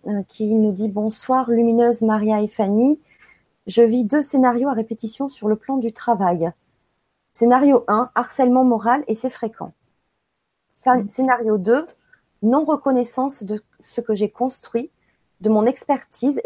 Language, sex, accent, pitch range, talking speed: French, female, French, 220-260 Hz, 140 wpm